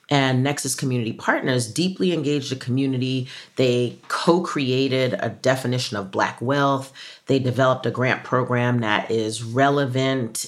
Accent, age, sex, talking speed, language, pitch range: American, 40-59, female, 130 wpm, English, 120-150 Hz